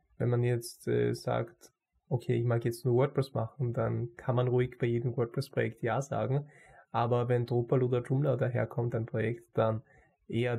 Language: German